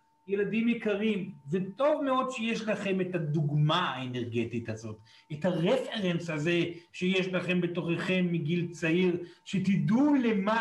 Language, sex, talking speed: Hebrew, male, 115 wpm